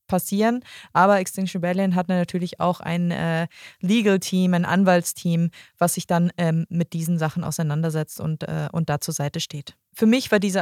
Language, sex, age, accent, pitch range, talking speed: German, female, 20-39, German, 175-205 Hz, 180 wpm